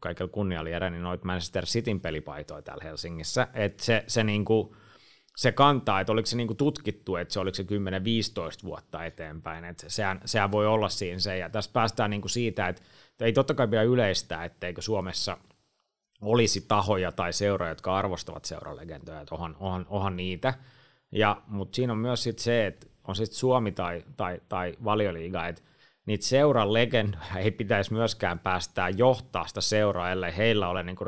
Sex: male